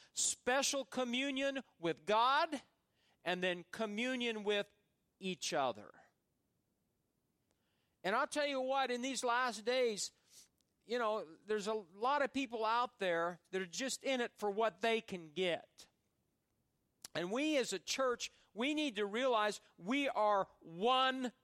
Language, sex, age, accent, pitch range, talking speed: English, male, 50-69, American, 205-265 Hz, 140 wpm